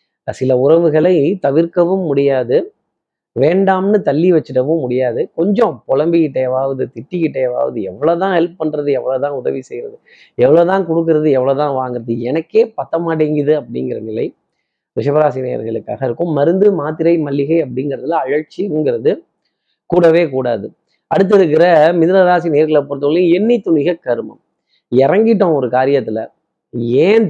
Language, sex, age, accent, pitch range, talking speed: Tamil, male, 30-49, native, 135-175 Hz, 105 wpm